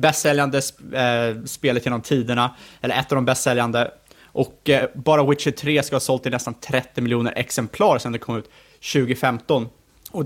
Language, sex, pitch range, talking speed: Swedish, male, 120-150 Hz, 175 wpm